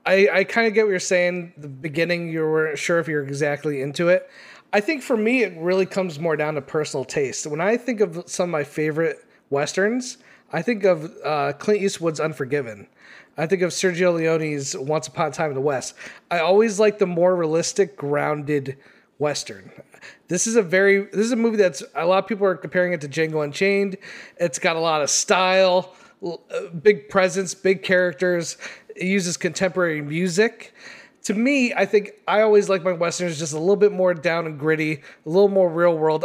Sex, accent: male, American